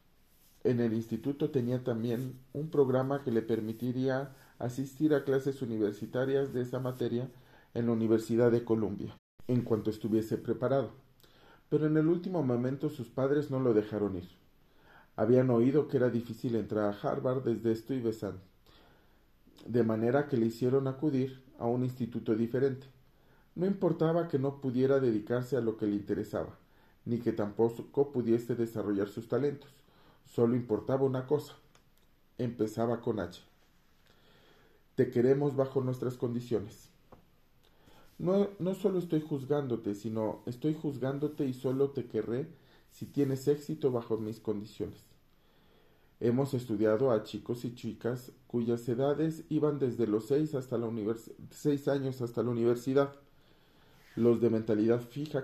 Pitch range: 115-140 Hz